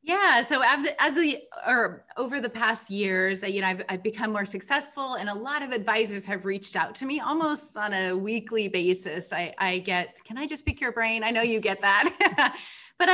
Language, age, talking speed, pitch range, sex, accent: English, 30-49, 210 wpm, 190-235 Hz, female, American